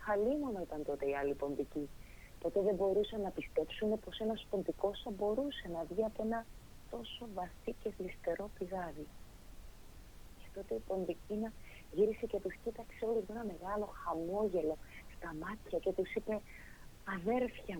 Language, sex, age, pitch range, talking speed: Greek, female, 30-49, 140-205 Hz, 150 wpm